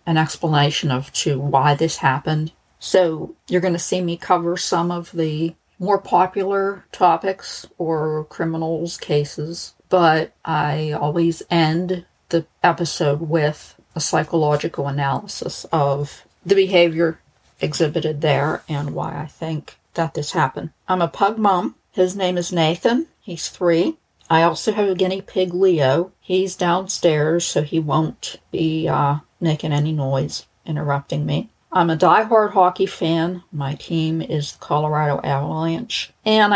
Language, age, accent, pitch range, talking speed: English, 50-69, American, 155-180 Hz, 140 wpm